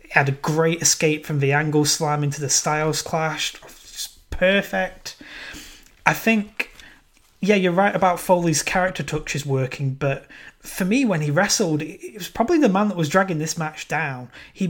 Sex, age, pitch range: male, 20-39, 145-180 Hz